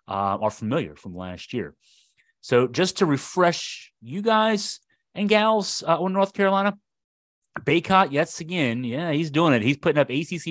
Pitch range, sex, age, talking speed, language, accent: 110-155 Hz, male, 30-49, 165 wpm, English, American